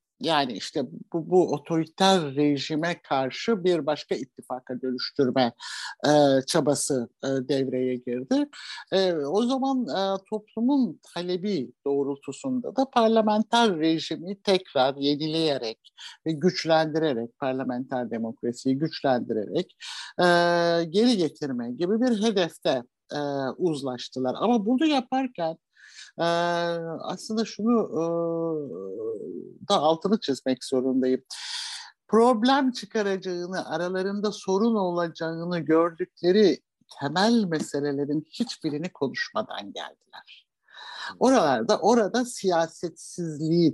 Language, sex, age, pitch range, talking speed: Turkish, male, 60-79, 145-215 Hz, 90 wpm